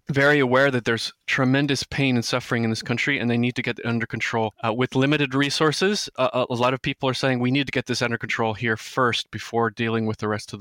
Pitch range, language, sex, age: 110-130 Hz, English, male, 20-39